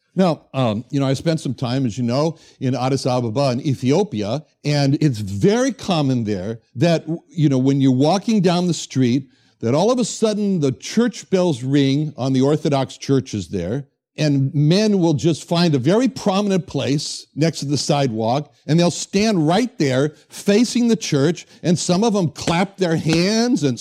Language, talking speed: English, 185 wpm